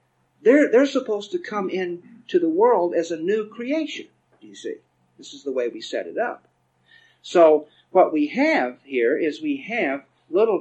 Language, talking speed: English, 175 wpm